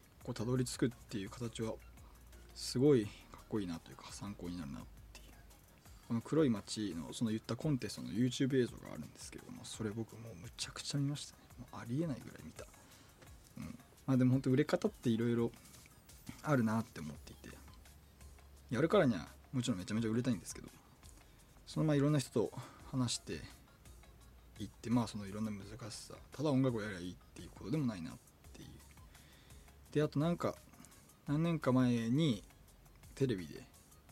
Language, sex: Japanese, male